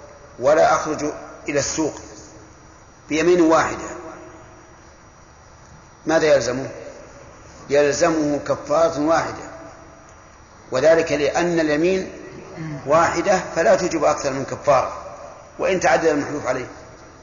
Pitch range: 130-165 Hz